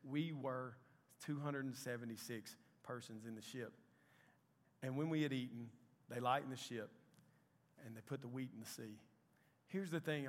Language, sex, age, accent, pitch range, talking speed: English, male, 40-59, American, 140-170 Hz, 155 wpm